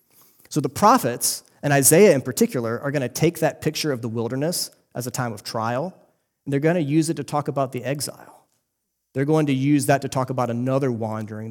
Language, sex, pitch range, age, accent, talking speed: English, male, 115-145 Hz, 30-49, American, 220 wpm